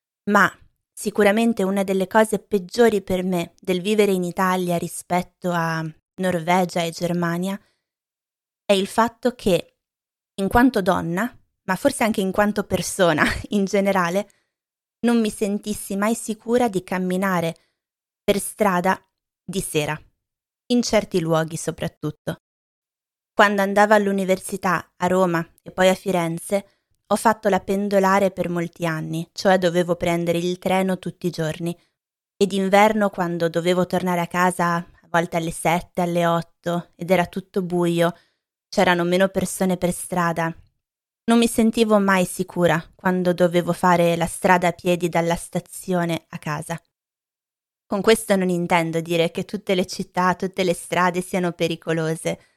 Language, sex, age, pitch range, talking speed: Italian, female, 20-39, 170-200 Hz, 140 wpm